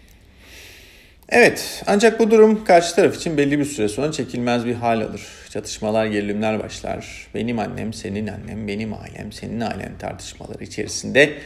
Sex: male